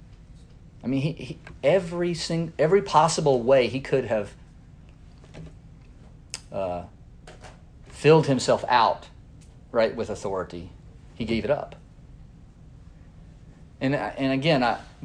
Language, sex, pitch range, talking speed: English, male, 115-155 Hz, 110 wpm